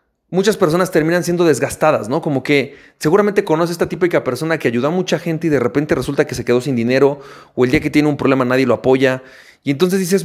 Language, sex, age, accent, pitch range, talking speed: Spanish, male, 30-49, Mexican, 145-205 Hz, 235 wpm